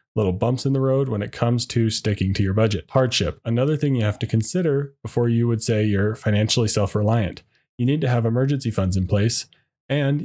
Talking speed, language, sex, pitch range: 210 wpm, English, male, 110-135 Hz